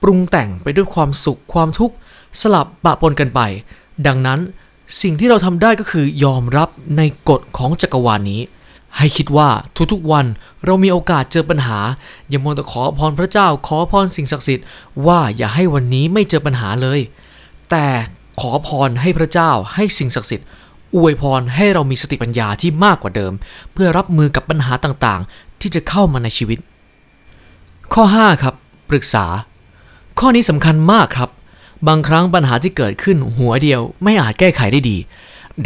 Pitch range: 125-180 Hz